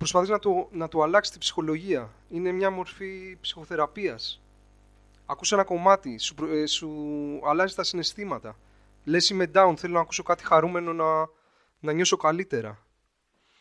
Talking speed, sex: 140 wpm, male